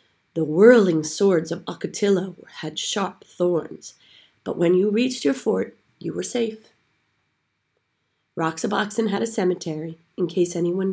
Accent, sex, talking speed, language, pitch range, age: American, female, 130 wpm, English, 165-220 Hz, 30-49